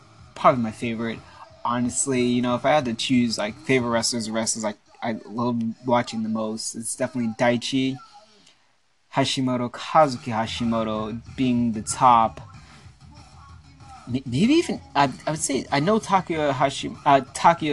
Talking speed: 140 wpm